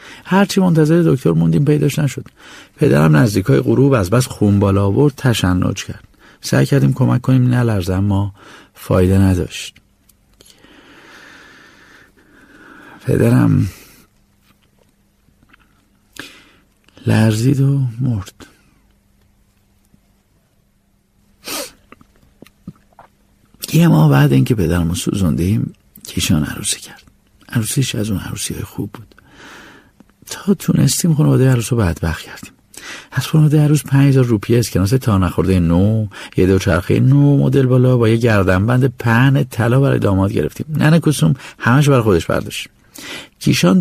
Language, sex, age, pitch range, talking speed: Persian, male, 60-79, 100-150 Hz, 110 wpm